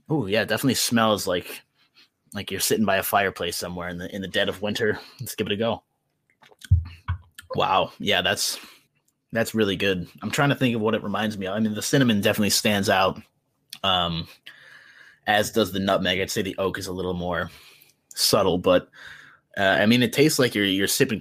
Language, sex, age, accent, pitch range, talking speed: English, male, 20-39, American, 95-120 Hz, 205 wpm